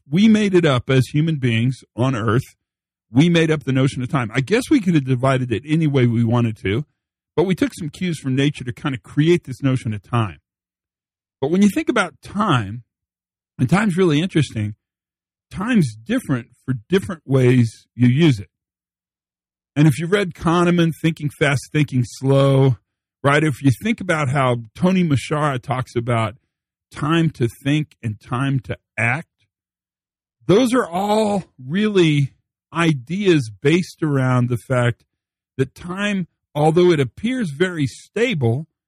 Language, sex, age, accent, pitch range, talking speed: English, male, 50-69, American, 120-160 Hz, 160 wpm